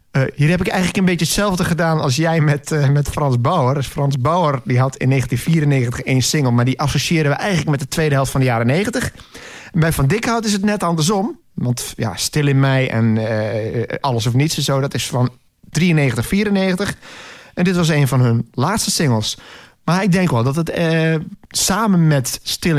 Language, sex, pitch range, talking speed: Dutch, male, 125-160 Hz, 215 wpm